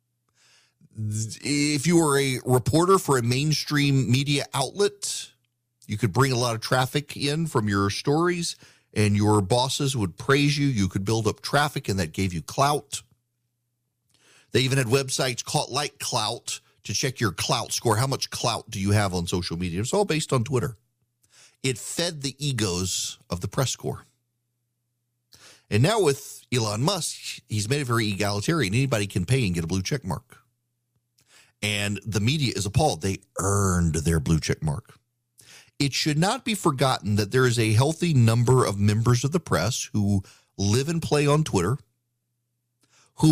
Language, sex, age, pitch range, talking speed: English, male, 40-59, 110-140 Hz, 170 wpm